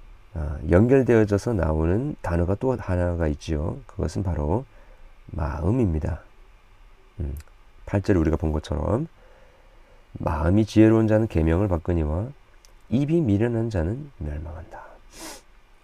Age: 40-59